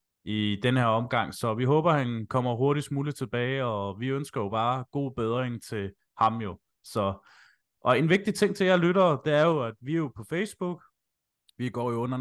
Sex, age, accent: male, 20-39, native